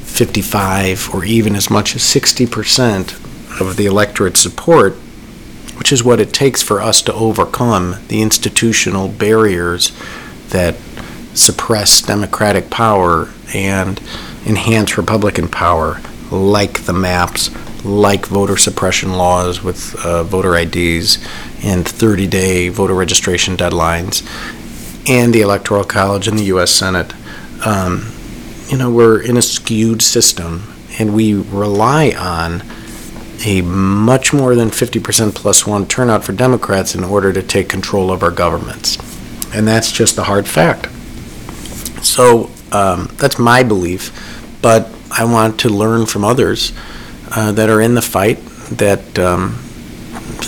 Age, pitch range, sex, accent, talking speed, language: 50-69, 95-115 Hz, male, American, 135 wpm, English